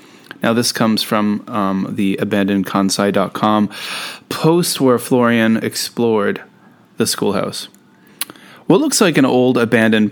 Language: English